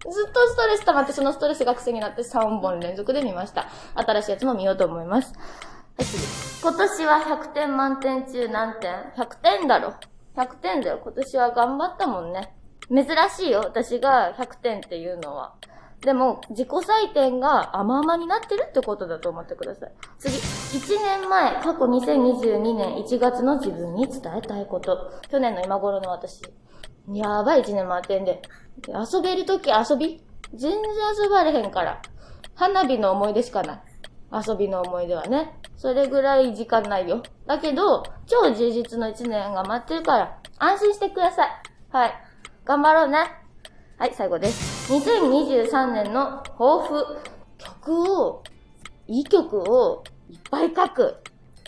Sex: female